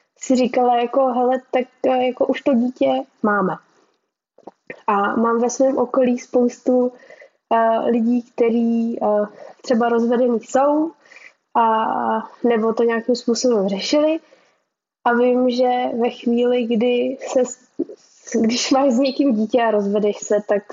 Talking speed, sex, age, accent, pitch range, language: 130 wpm, female, 10-29, native, 215-245 Hz, Czech